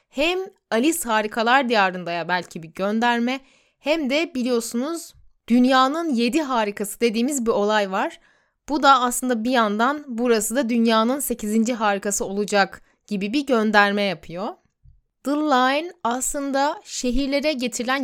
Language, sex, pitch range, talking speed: Turkish, female, 200-270 Hz, 125 wpm